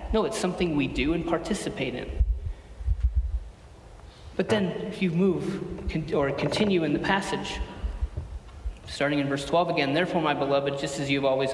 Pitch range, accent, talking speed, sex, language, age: 140-215 Hz, American, 155 wpm, male, English, 40-59